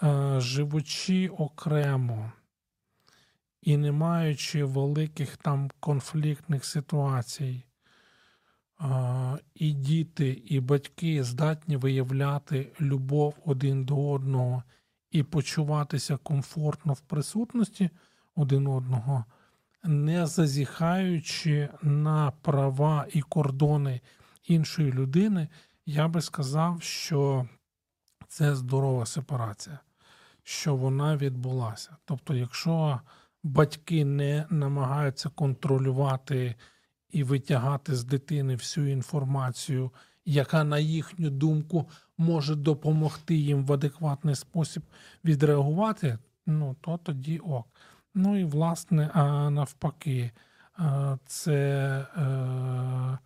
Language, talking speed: Ukrainian, 85 wpm